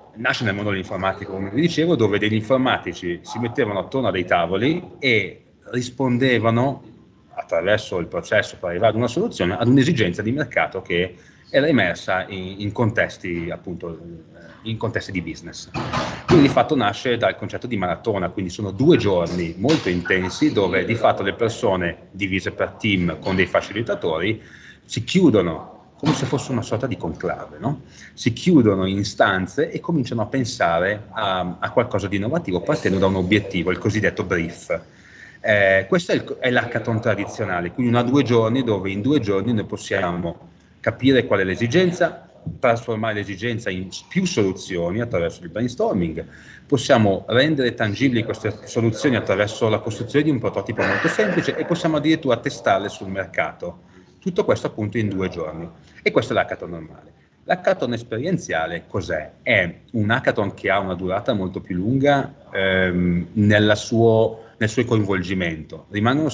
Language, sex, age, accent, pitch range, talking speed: Italian, male, 30-49, native, 95-125 Hz, 155 wpm